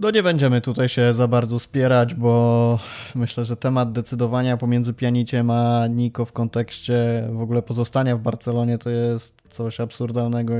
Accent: native